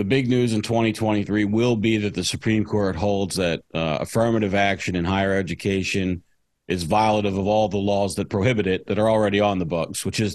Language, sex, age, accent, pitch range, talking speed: English, male, 40-59, American, 100-115 Hz, 210 wpm